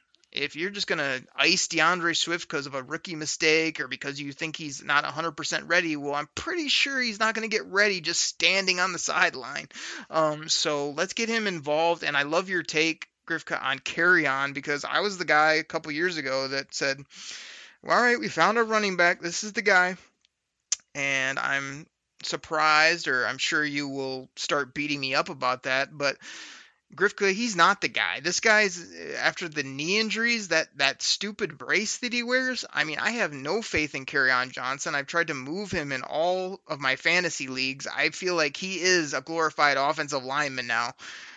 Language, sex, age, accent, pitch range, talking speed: English, male, 30-49, American, 140-180 Hz, 200 wpm